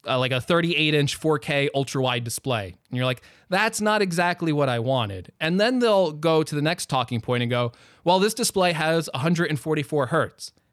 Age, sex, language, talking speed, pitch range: 20-39, male, English, 185 wpm, 130-180 Hz